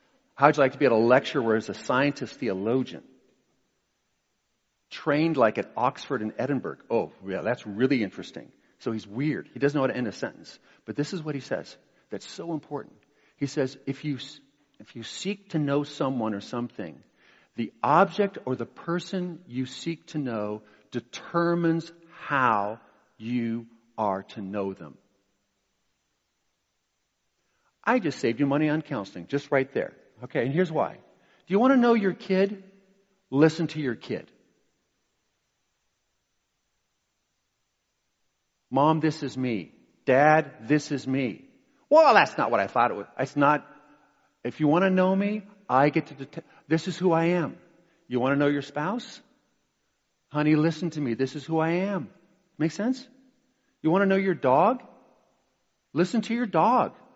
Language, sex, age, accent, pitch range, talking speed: English, male, 50-69, American, 130-180 Hz, 165 wpm